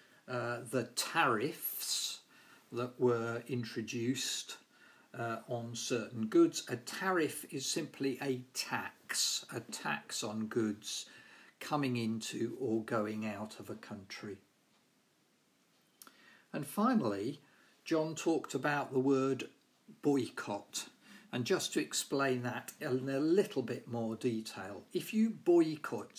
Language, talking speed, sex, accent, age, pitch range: English, 115 wpm, male, British, 50-69, 115-150 Hz